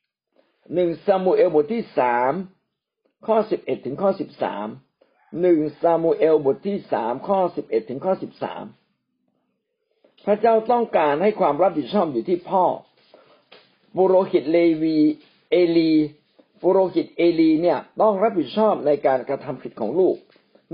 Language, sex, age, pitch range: Thai, male, 60-79, 155-215 Hz